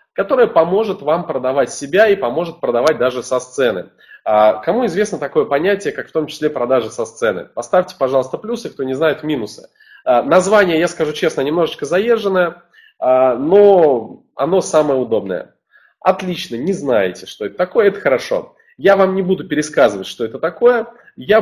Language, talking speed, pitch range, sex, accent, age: Russian, 155 wpm, 140-195 Hz, male, native, 20-39